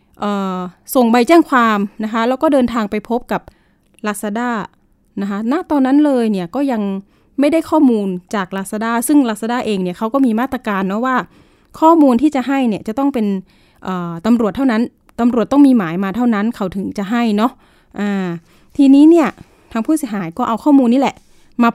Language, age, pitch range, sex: Thai, 20-39, 195-260 Hz, female